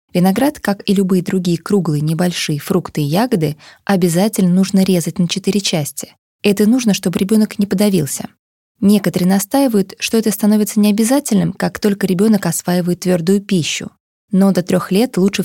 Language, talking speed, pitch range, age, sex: Russian, 150 wpm, 175-210 Hz, 20-39, female